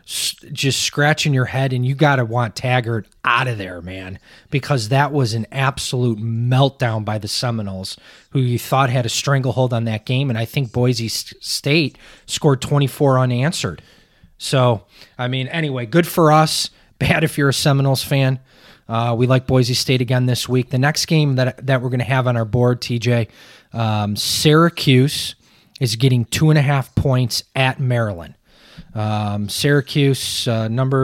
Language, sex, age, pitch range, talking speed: English, male, 20-39, 115-140 Hz, 165 wpm